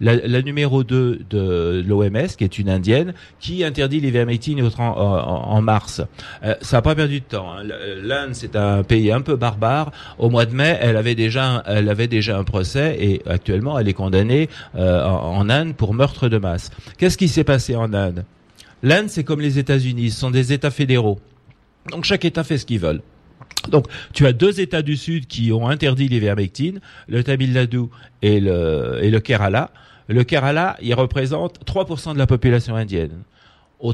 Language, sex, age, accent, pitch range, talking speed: French, male, 40-59, French, 105-145 Hz, 195 wpm